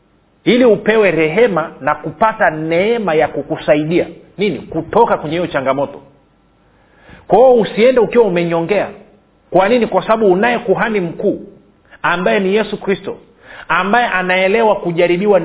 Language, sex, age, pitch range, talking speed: Swahili, male, 40-59, 160-200 Hz, 120 wpm